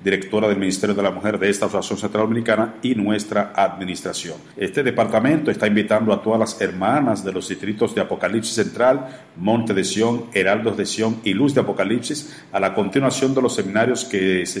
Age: 50-69